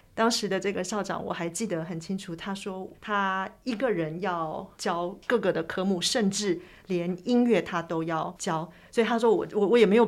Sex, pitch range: female, 170-205 Hz